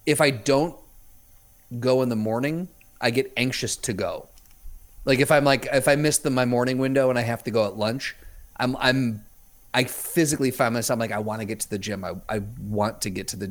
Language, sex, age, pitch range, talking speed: English, male, 30-49, 105-135 Hz, 225 wpm